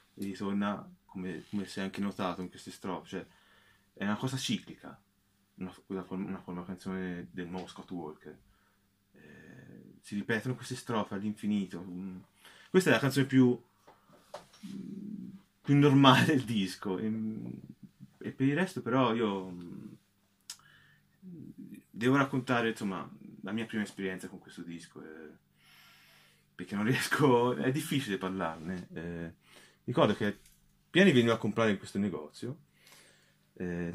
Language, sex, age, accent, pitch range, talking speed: Italian, male, 20-39, native, 90-115 Hz, 135 wpm